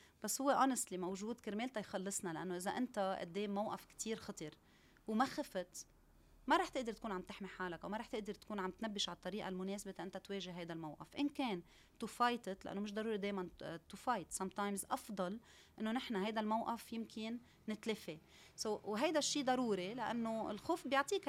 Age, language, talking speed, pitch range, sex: 30-49, Arabic, 175 wpm, 185-240 Hz, female